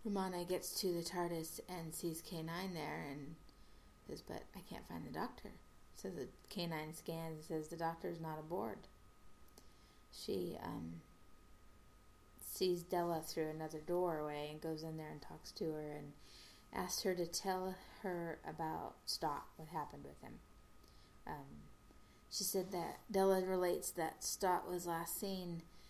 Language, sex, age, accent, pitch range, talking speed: English, female, 30-49, American, 155-180 Hz, 150 wpm